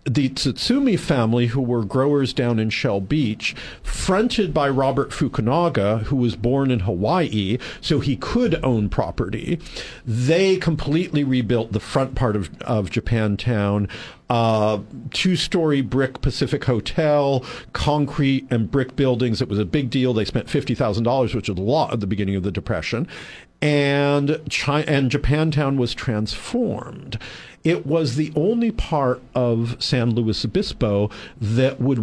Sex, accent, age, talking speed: male, American, 50-69, 145 wpm